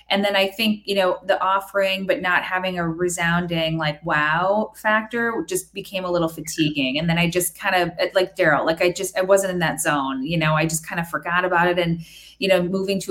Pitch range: 165-210 Hz